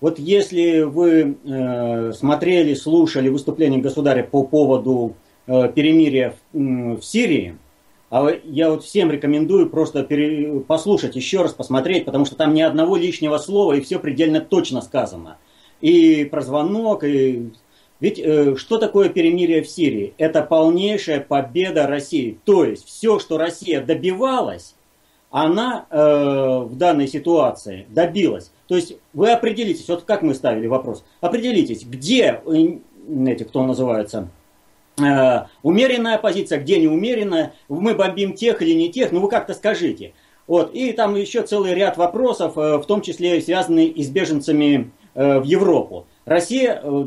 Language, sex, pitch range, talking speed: Russian, male, 140-205 Hz, 140 wpm